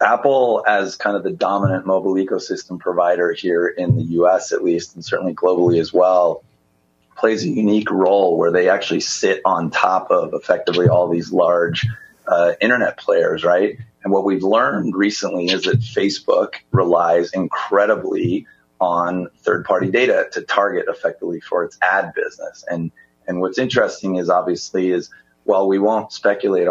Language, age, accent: English, 30-49, American